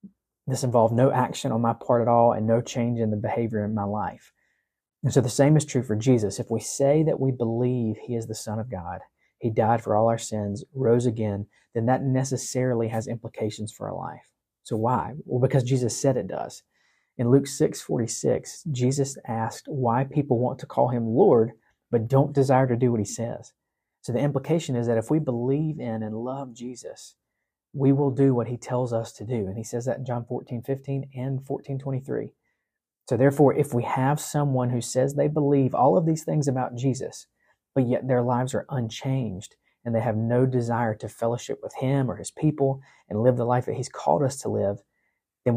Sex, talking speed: male, 210 wpm